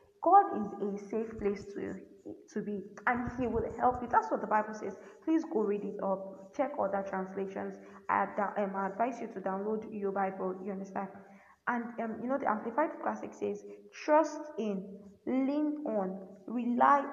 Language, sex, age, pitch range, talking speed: English, female, 20-39, 200-255 Hz, 175 wpm